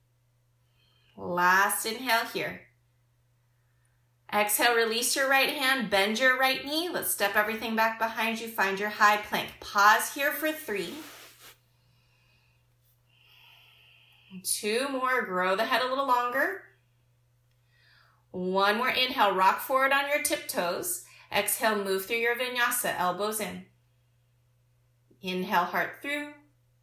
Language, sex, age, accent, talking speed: English, female, 30-49, American, 115 wpm